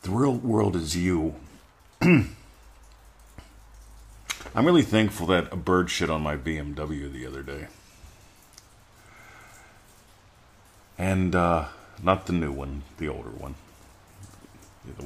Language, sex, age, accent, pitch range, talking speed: English, male, 50-69, American, 75-95 Hz, 110 wpm